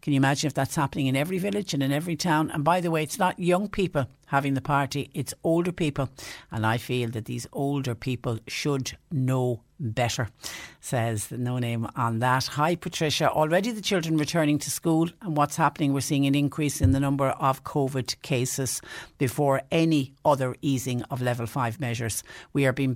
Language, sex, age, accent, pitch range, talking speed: English, female, 60-79, Irish, 130-160 Hz, 195 wpm